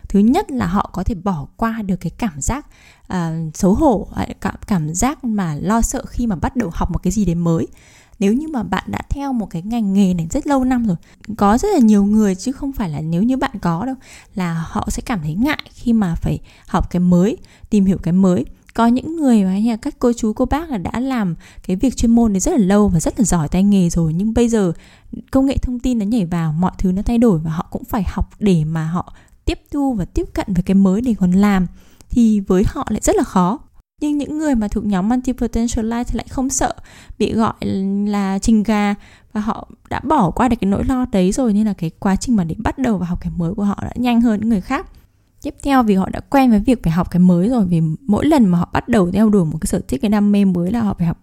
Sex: female